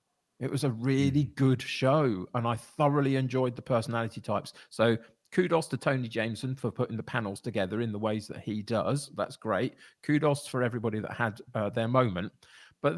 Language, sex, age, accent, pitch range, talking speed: English, male, 40-59, British, 110-140 Hz, 185 wpm